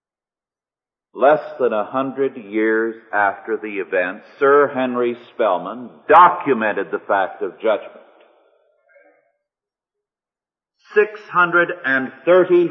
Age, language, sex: 50-69, English, male